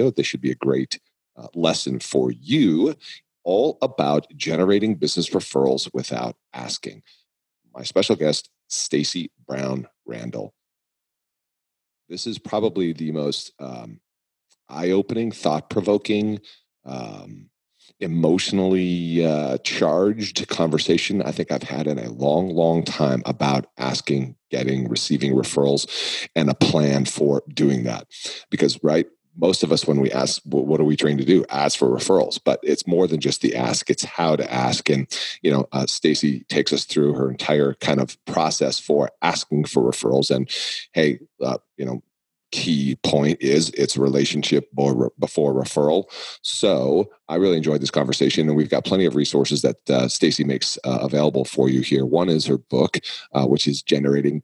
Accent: American